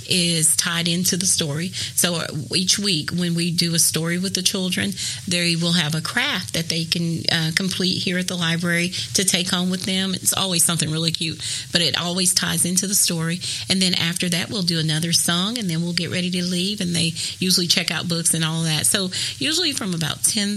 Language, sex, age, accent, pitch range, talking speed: English, female, 40-59, American, 160-185 Hz, 225 wpm